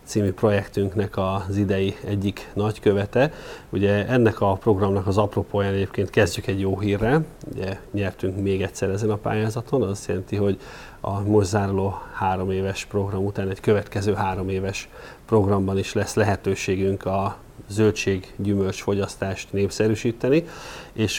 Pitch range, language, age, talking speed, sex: 95-105 Hz, Hungarian, 30-49, 135 wpm, male